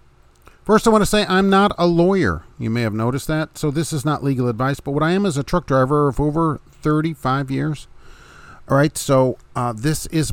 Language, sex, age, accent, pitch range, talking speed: English, male, 40-59, American, 110-150 Hz, 220 wpm